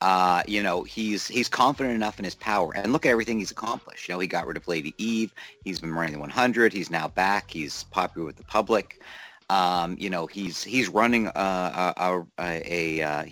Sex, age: male, 50-69